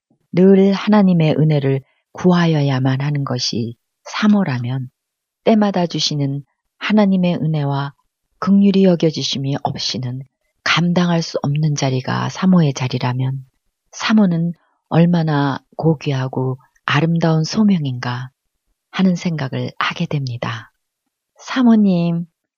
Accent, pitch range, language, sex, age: native, 140-190 Hz, Korean, female, 40-59